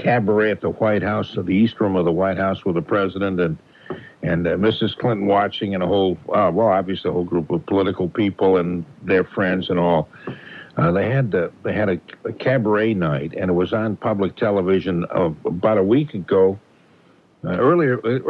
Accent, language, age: American, English, 60-79